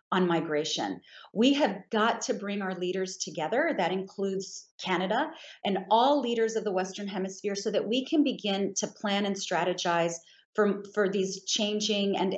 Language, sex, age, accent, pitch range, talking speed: English, female, 40-59, American, 185-235 Hz, 165 wpm